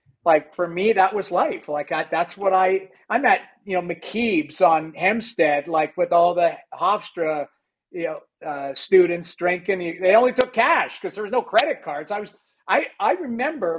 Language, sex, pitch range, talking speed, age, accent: English, male, 155-200 Hz, 185 wpm, 50-69, American